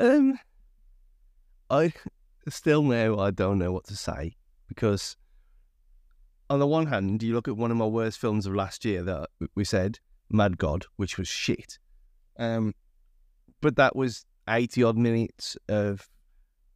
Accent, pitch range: British, 90-130 Hz